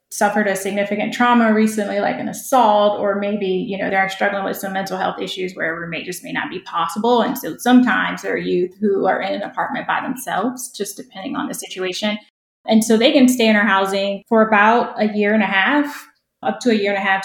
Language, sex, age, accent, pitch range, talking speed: English, female, 20-39, American, 195-225 Hz, 235 wpm